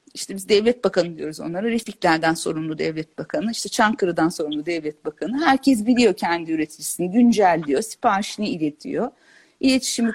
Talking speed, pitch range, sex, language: 135 wpm, 185-260 Hz, female, Turkish